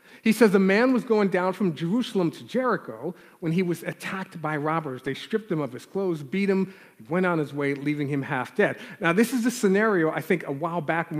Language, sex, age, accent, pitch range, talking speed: English, male, 40-59, American, 150-195 Hz, 235 wpm